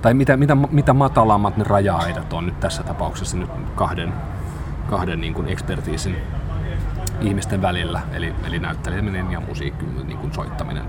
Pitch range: 85-105 Hz